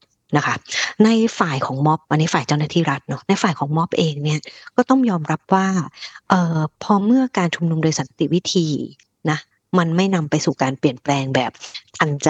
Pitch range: 150-190 Hz